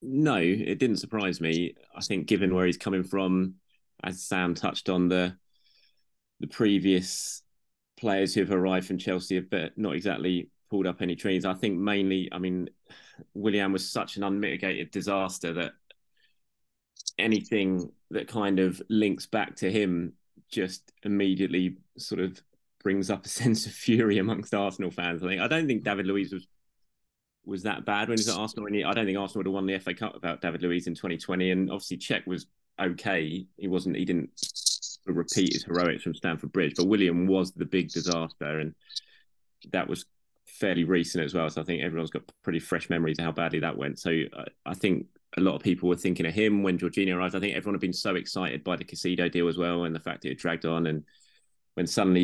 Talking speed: 200 wpm